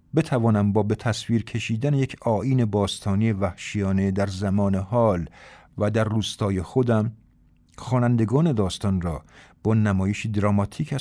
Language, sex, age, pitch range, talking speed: Persian, male, 50-69, 100-125 Hz, 120 wpm